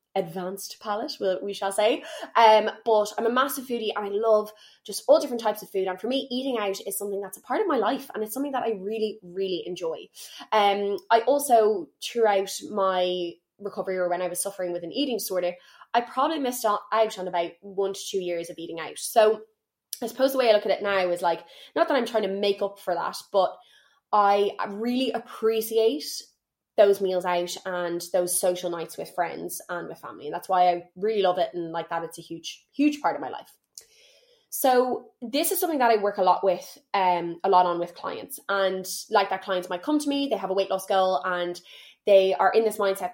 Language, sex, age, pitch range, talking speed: English, female, 20-39, 185-230 Hz, 225 wpm